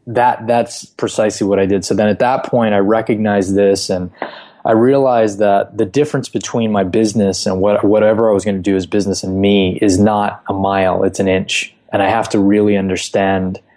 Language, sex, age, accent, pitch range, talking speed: English, male, 20-39, American, 95-115 Hz, 210 wpm